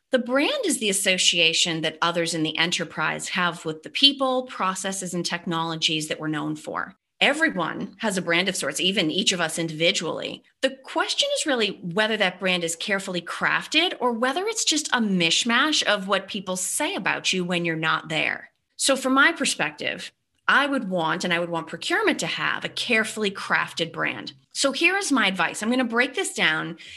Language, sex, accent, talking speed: English, female, American, 195 wpm